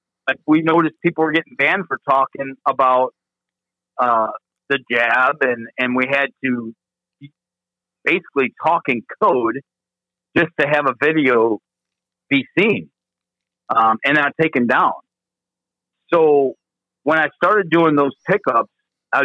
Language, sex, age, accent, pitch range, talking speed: English, male, 50-69, American, 115-150 Hz, 130 wpm